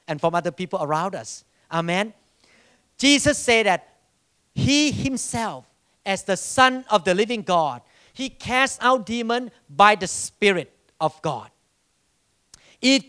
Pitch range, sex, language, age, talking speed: 165-225 Hz, male, English, 40-59, 135 wpm